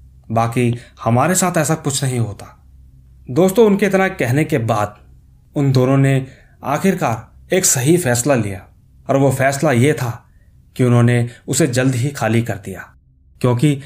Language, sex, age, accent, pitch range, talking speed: Hindi, male, 30-49, native, 105-145 Hz, 150 wpm